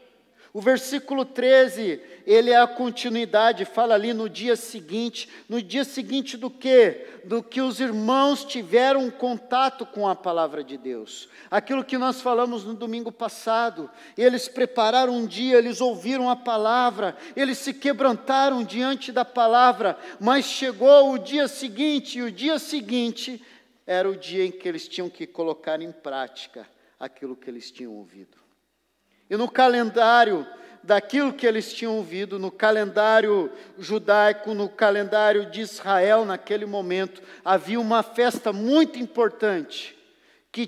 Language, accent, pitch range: Portuguese, Brazilian, 210-260 Hz